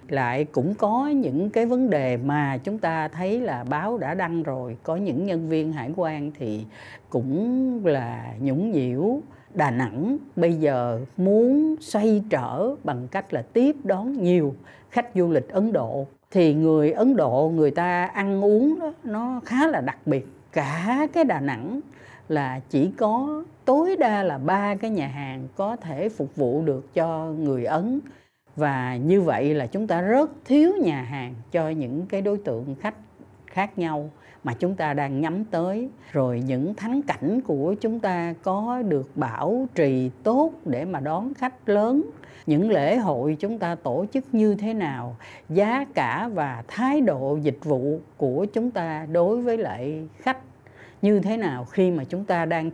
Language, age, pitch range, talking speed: Vietnamese, 60-79, 145-225 Hz, 175 wpm